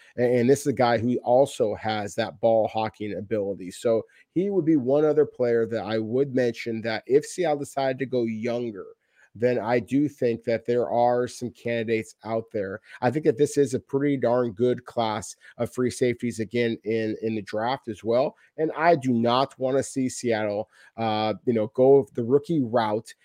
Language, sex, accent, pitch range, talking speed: English, male, American, 115-150 Hz, 195 wpm